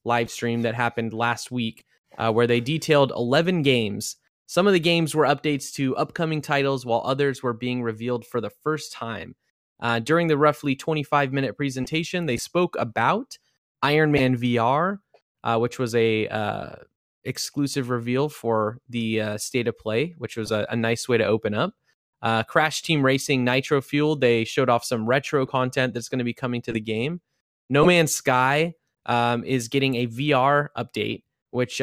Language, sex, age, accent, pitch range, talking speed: English, male, 20-39, American, 115-140 Hz, 175 wpm